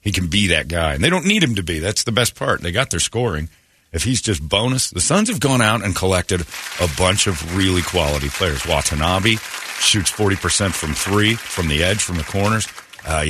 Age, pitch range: 40-59, 85-110 Hz